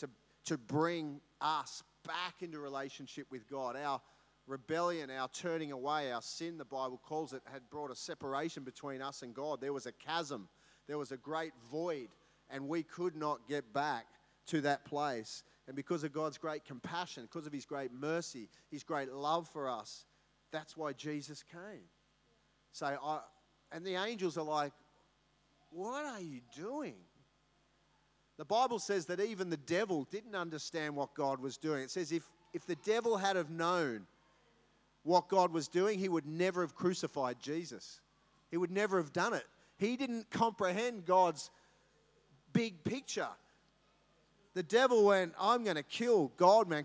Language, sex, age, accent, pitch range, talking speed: English, male, 40-59, Australian, 145-180 Hz, 165 wpm